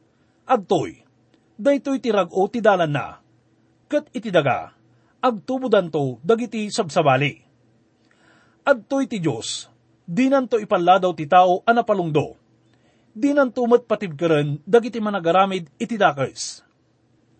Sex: male